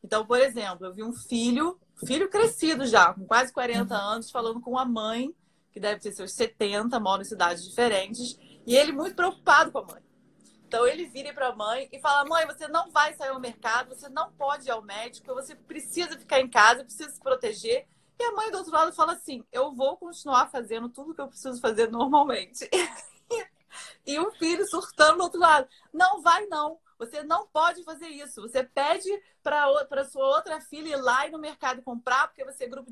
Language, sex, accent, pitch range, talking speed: Portuguese, female, Brazilian, 225-310 Hz, 205 wpm